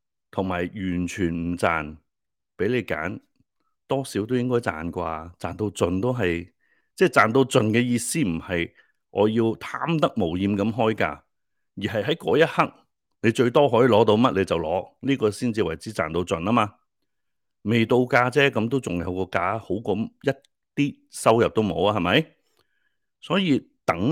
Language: Chinese